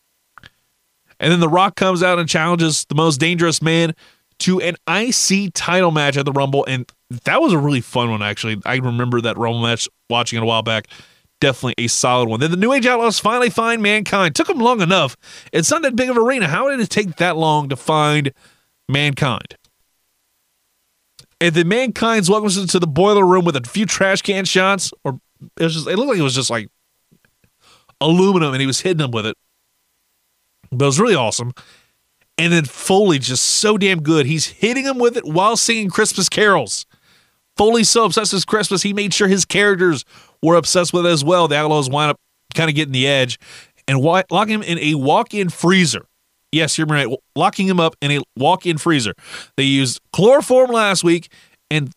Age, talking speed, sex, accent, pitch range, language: 30-49, 200 wpm, male, American, 140-200 Hz, English